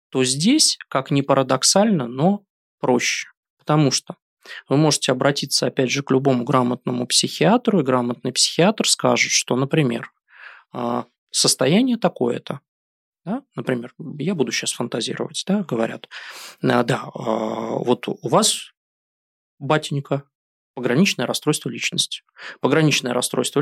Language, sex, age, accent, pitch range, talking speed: Russian, male, 20-39, native, 125-170 Hz, 110 wpm